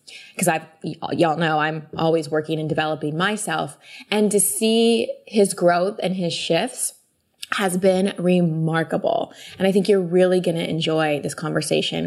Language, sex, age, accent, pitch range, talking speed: English, female, 20-39, American, 155-190 Hz, 160 wpm